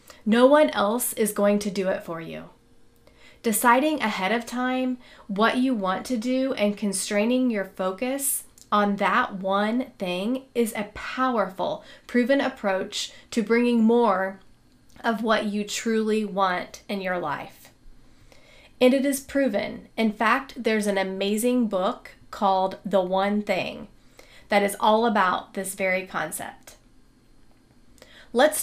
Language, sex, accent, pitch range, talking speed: English, female, American, 200-245 Hz, 135 wpm